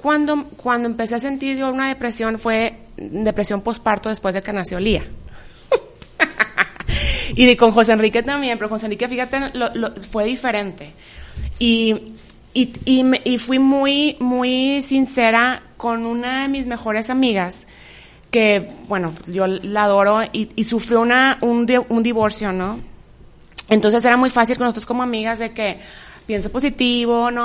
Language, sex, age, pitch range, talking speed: Spanish, female, 20-39, 210-250 Hz, 150 wpm